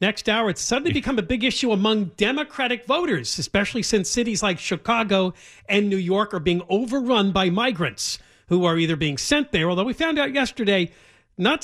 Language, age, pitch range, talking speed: English, 40-59, 140-225 Hz, 185 wpm